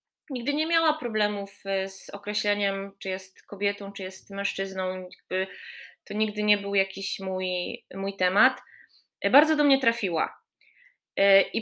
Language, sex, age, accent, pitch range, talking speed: Polish, female, 20-39, native, 195-250 Hz, 130 wpm